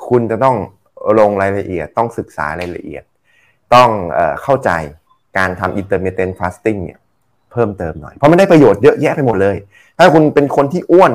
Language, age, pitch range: Thai, 20-39, 95-130 Hz